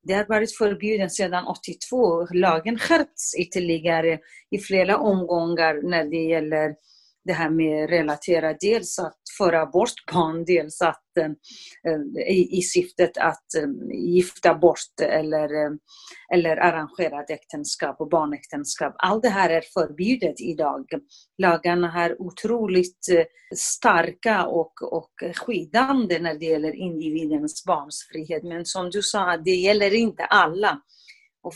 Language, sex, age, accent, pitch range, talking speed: Swedish, female, 40-59, native, 160-205 Hz, 135 wpm